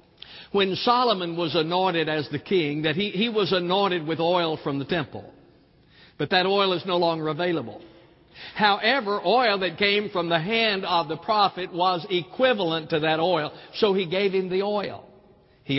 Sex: male